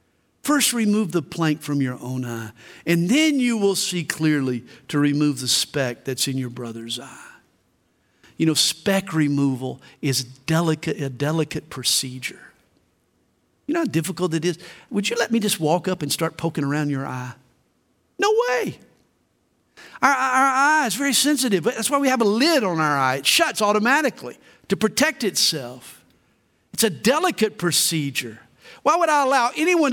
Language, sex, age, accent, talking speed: English, male, 50-69, American, 170 wpm